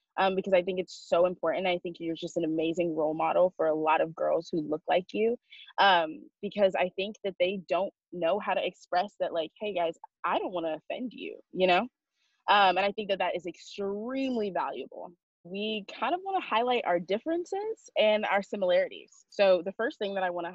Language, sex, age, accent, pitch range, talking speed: English, female, 20-39, American, 175-230 Hz, 220 wpm